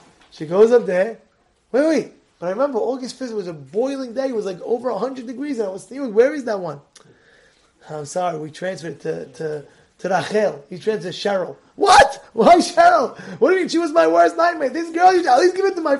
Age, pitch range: 20-39, 175-255 Hz